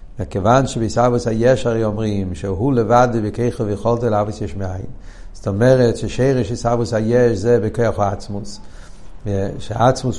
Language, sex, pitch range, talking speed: Hebrew, male, 100-125 Hz, 130 wpm